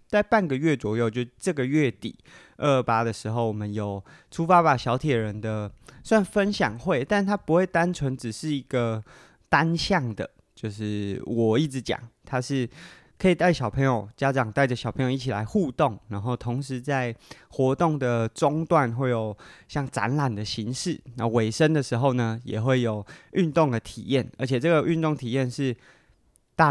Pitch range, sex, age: 115-150 Hz, male, 20-39